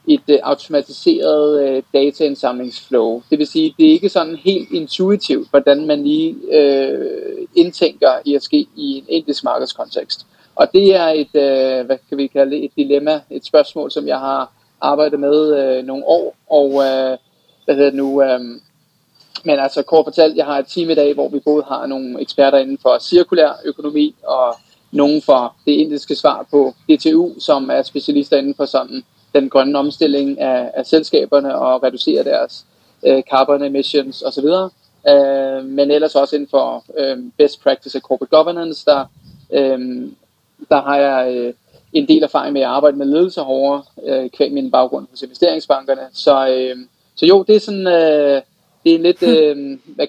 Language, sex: Danish, male